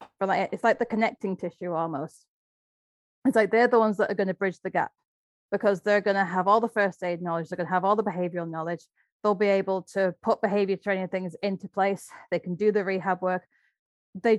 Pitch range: 185-225 Hz